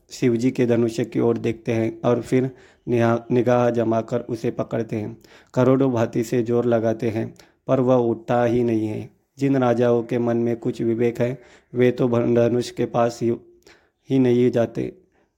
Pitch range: 115-125 Hz